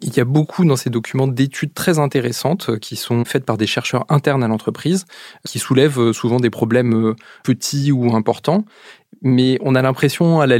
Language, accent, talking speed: French, French, 185 wpm